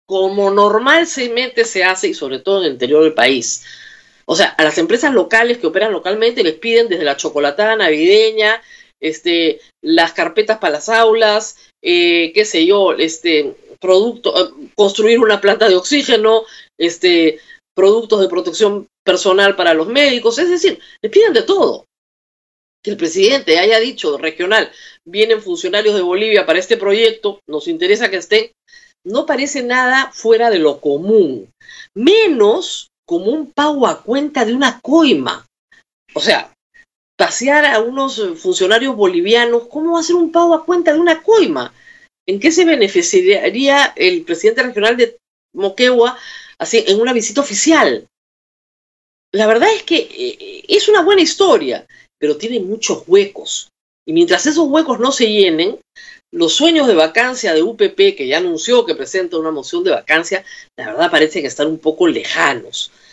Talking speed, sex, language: 155 wpm, female, Spanish